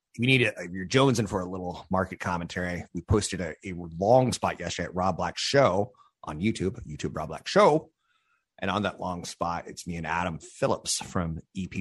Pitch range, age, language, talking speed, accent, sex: 95-130 Hz, 30-49, English, 200 wpm, American, male